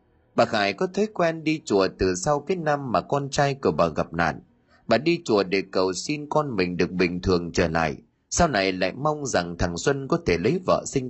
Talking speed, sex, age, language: 230 wpm, male, 30-49, Vietnamese